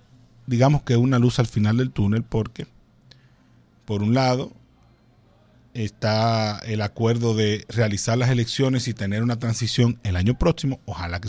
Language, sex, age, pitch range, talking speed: Spanish, male, 40-59, 110-135 Hz, 155 wpm